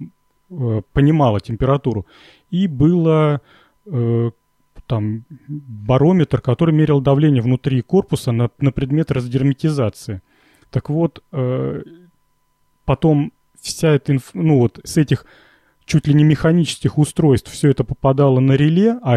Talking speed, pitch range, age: 115 wpm, 125-155 Hz, 30-49